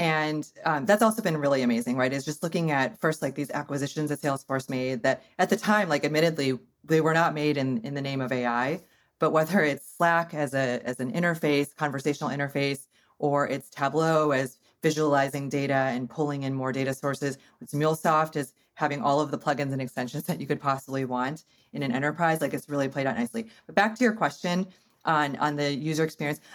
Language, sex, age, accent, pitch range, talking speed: English, female, 30-49, American, 135-165 Hz, 210 wpm